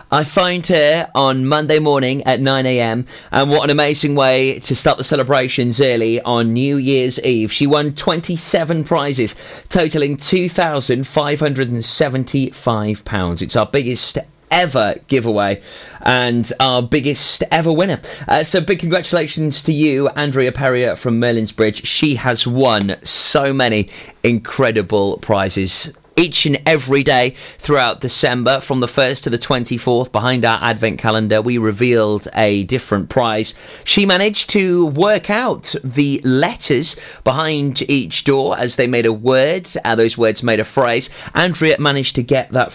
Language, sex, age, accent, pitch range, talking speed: English, male, 30-49, British, 110-145 Hz, 145 wpm